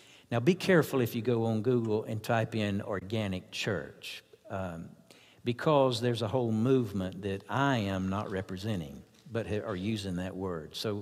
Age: 60-79